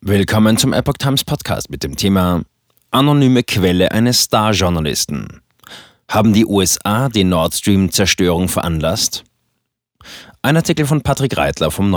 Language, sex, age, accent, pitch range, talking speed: German, male, 30-49, German, 90-115 Hz, 125 wpm